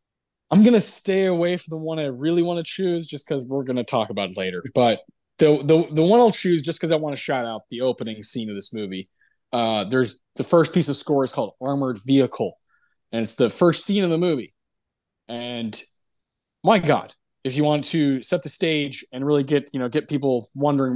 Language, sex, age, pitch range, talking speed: English, male, 20-39, 120-150 Hz, 220 wpm